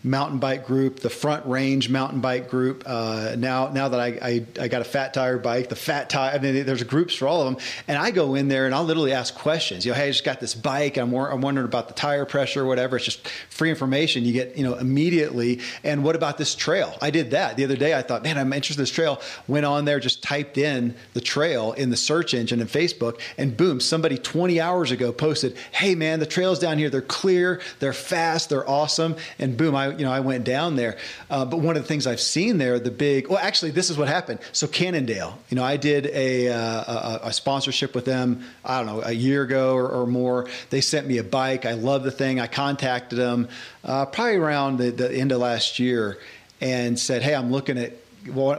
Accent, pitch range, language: American, 125-150 Hz, English